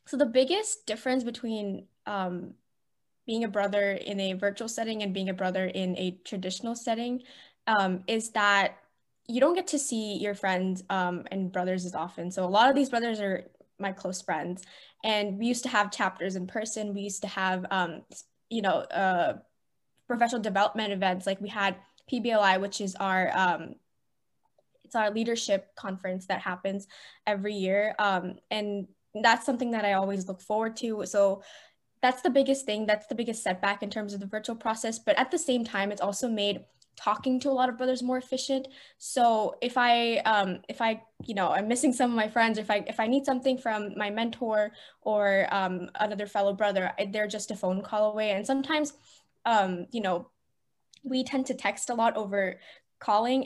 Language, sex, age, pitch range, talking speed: English, female, 10-29, 195-235 Hz, 190 wpm